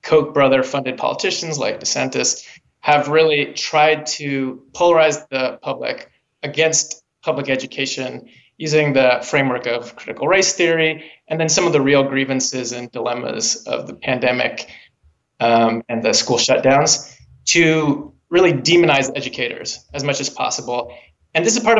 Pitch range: 130-160 Hz